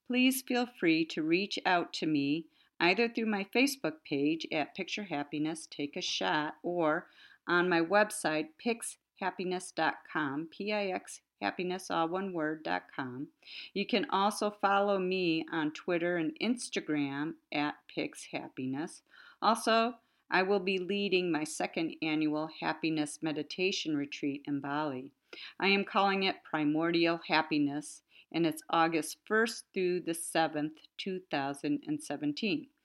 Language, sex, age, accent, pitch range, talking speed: English, female, 50-69, American, 150-200 Hz, 125 wpm